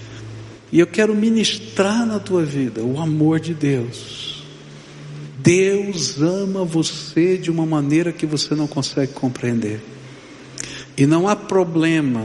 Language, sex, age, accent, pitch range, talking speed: Portuguese, male, 60-79, Brazilian, 125-190 Hz, 125 wpm